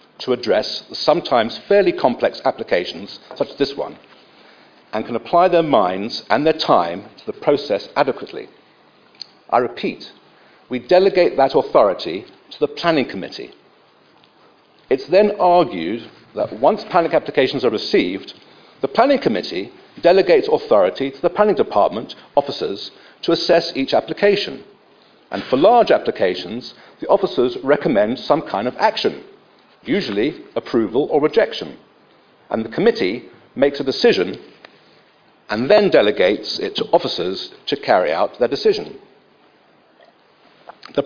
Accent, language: British, English